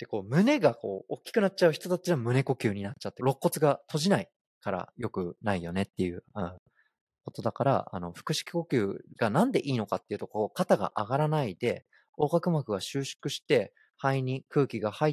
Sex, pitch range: male, 105-155 Hz